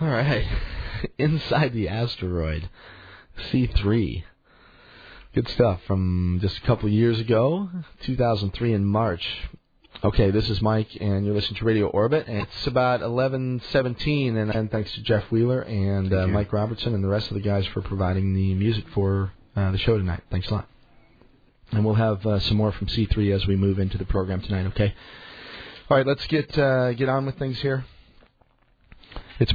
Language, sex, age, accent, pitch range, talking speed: English, male, 40-59, American, 95-120 Hz, 175 wpm